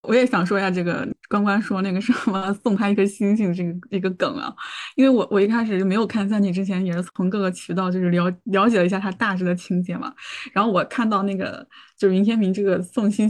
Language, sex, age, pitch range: Chinese, female, 20-39, 195-250 Hz